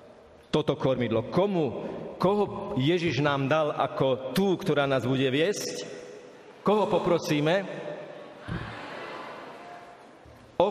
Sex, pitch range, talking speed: male, 140-180 Hz, 90 wpm